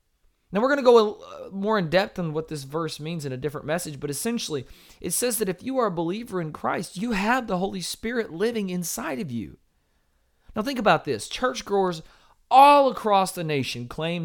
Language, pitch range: English, 110-175 Hz